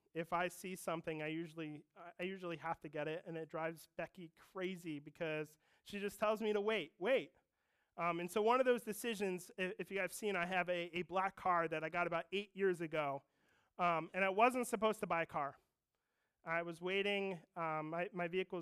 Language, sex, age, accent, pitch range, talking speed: English, male, 30-49, American, 160-190 Hz, 215 wpm